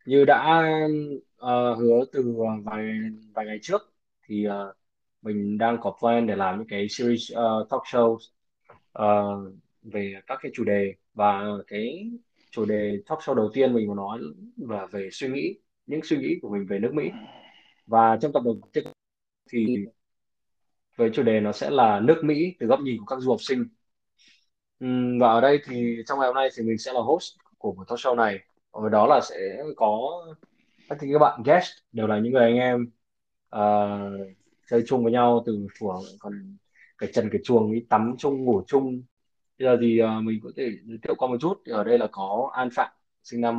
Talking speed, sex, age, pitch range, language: 200 wpm, male, 20-39, 105-130 Hz, Vietnamese